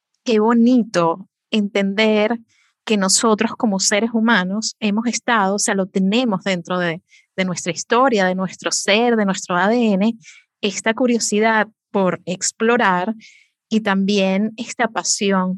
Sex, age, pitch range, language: female, 30-49, 190-220 Hz, Spanish